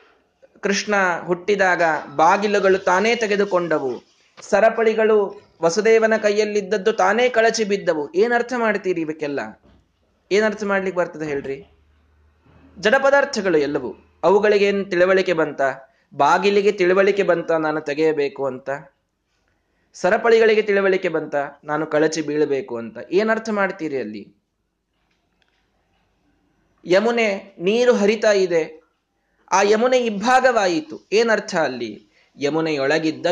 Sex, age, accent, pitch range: male, 20-39, native, 155-215 Hz